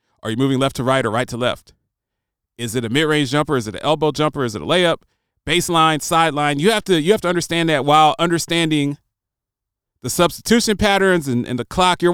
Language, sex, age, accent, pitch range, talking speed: English, male, 30-49, American, 115-175 Hz, 215 wpm